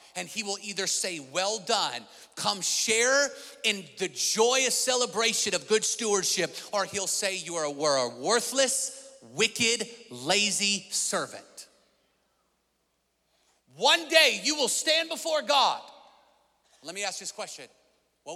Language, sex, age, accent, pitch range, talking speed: English, male, 30-49, American, 180-250 Hz, 135 wpm